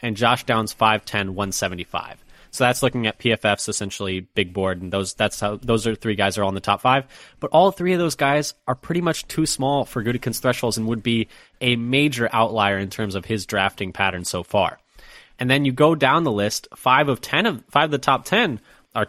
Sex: male